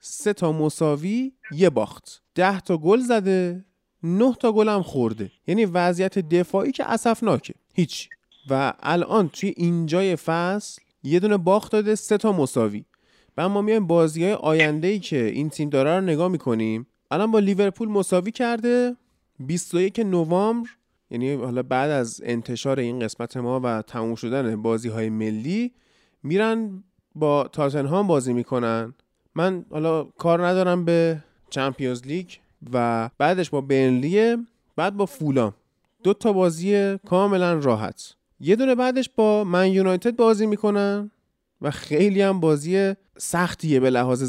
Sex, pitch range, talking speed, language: male, 130-205 Hz, 140 wpm, Persian